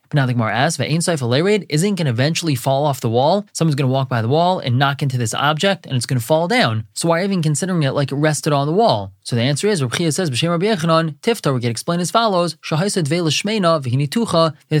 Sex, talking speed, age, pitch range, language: male, 225 wpm, 20-39, 130-165 Hz, English